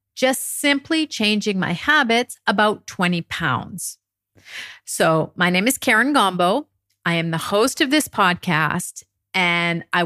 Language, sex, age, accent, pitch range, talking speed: English, female, 50-69, American, 165-235 Hz, 135 wpm